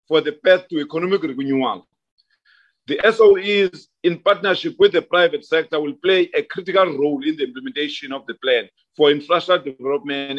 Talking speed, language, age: 160 wpm, English, 50-69